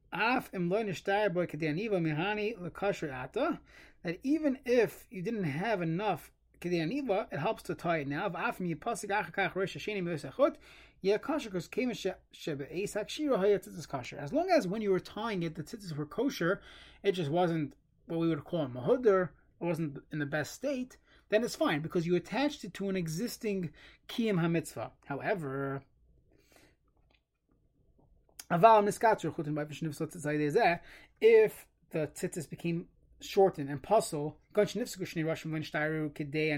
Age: 30-49